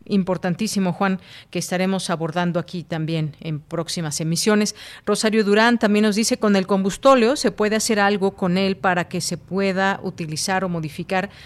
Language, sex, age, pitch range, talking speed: Spanish, female, 40-59, 170-200 Hz, 160 wpm